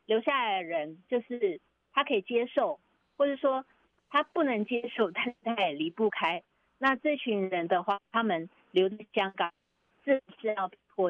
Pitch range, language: 185-265 Hz, Chinese